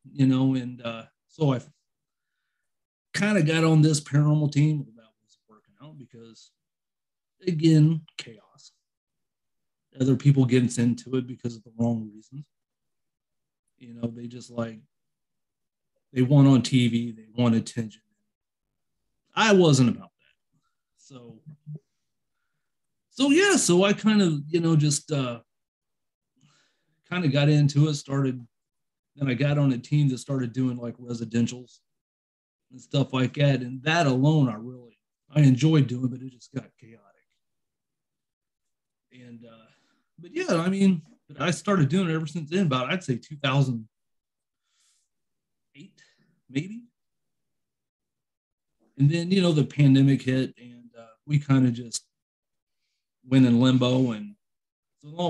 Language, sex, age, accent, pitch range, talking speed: English, male, 30-49, American, 120-155 Hz, 140 wpm